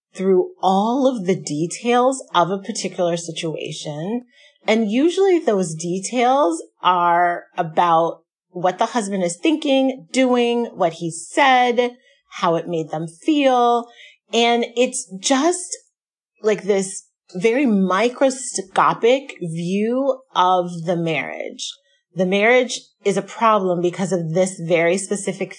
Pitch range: 180-250 Hz